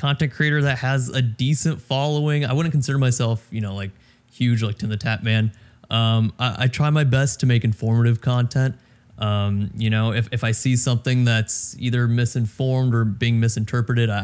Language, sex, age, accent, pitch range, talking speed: English, male, 20-39, American, 110-130 Hz, 185 wpm